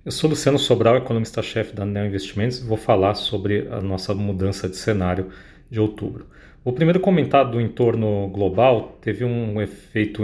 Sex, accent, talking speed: male, Brazilian, 165 wpm